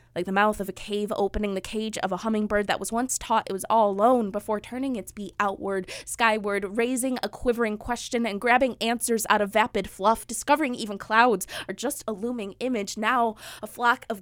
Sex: female